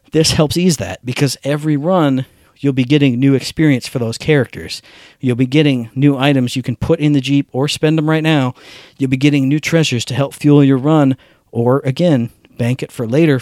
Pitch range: 125-150 Hz